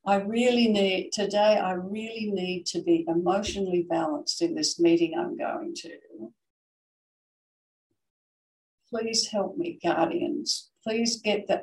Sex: female